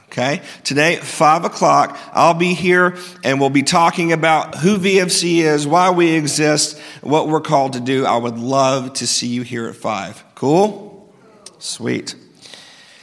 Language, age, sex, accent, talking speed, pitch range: English, 40-59, male, American, 155 wpm, 150-185 Hz